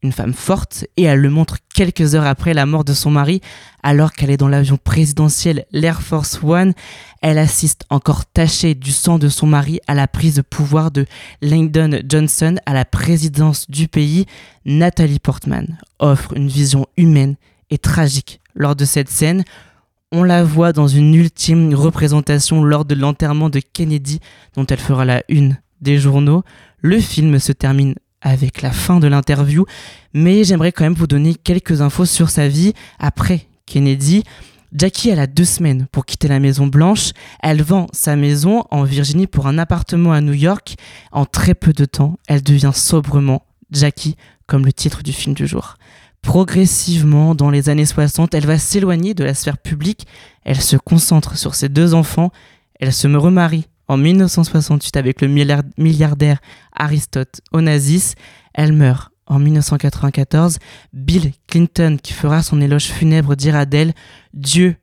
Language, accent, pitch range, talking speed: French, French, 140-165 Hz, 165 wpm